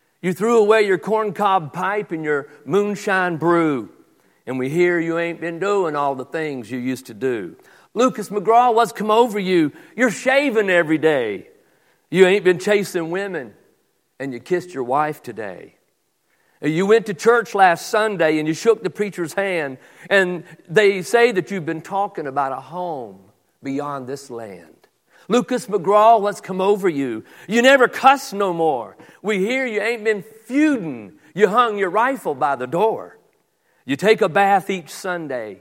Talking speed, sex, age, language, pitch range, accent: 170 wpm, male, 50-69, English, 140-205 Hz, American